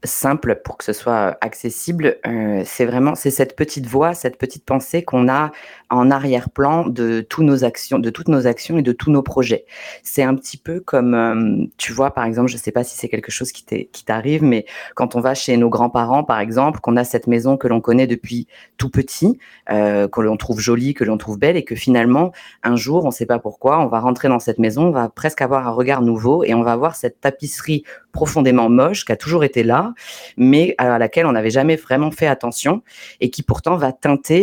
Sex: female